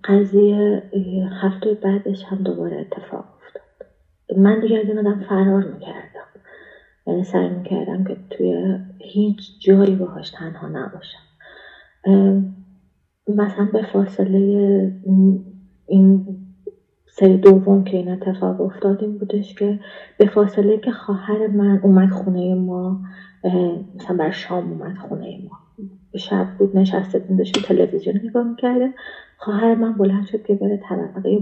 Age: 30-49